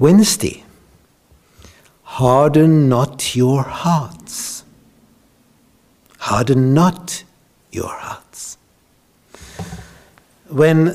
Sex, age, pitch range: male, 60-79, 130-180 Hz